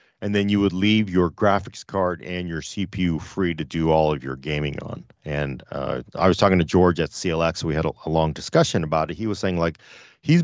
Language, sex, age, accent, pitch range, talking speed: English, male, 40-59, American, 90-120 Hz, 240 wpm